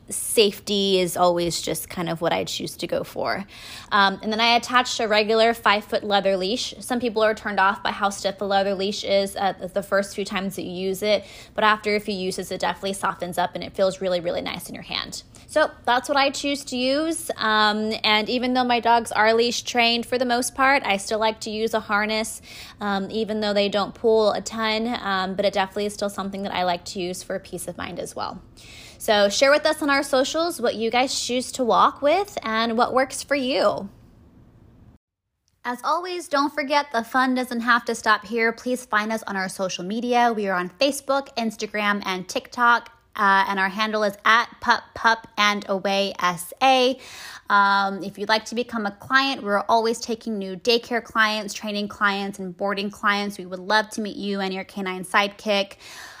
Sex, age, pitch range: female, 20-39, 195-240 Hz